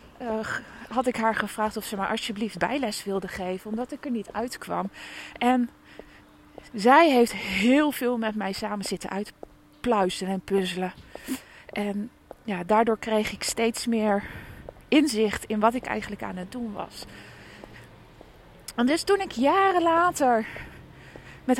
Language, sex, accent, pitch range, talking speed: Dutch, female, Dutch, 200-260 Hz, 140 wpm